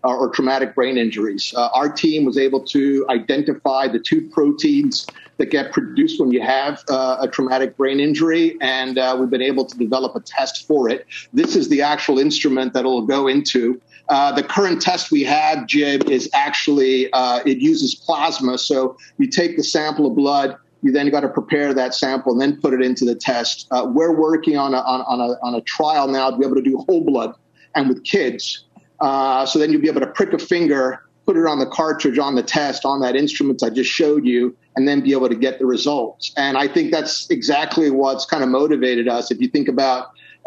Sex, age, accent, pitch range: male, 40-59, American, 130-155 Hz